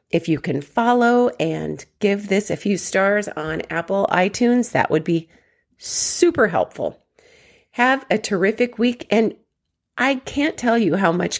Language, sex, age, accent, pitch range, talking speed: English, female, 40-59, American, 180-235 Hz, 155 wpm